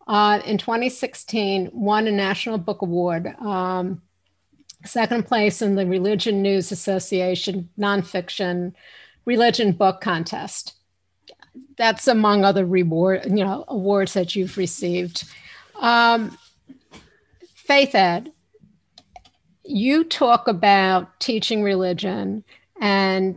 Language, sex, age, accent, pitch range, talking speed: English, female, 50-69, American, 185-220 Hz, 100 wpm